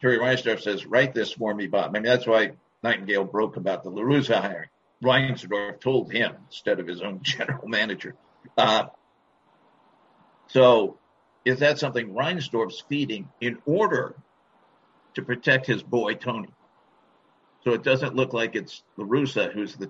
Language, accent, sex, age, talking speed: English, American, male, 50-69, 150 wpm